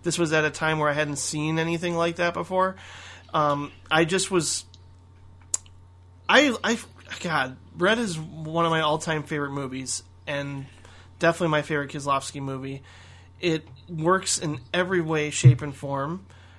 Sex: male